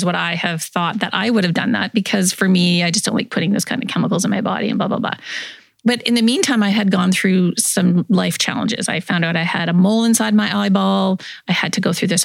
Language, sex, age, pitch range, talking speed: English, female, 30-49, 180-220 Hz, 275 wpm